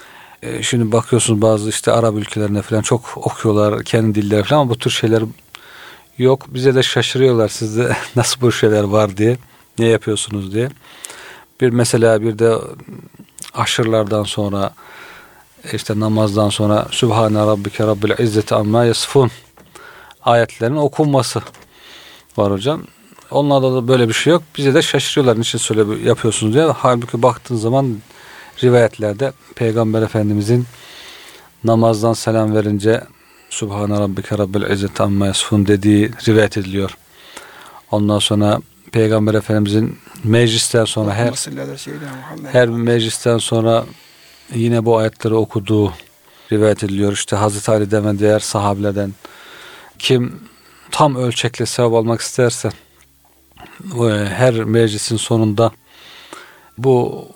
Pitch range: 105-120 Hz